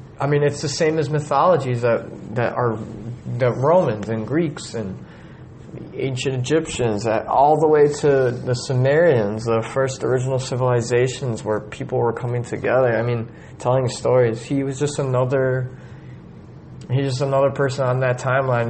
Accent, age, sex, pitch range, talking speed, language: American, 20-39, male, 115-135 Hz, 155 wpm, English